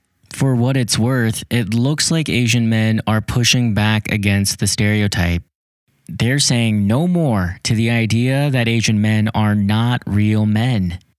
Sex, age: male, 20-39